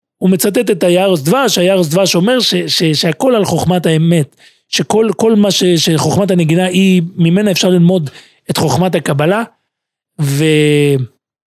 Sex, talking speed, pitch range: male, 145 wpm, 155-205 Hz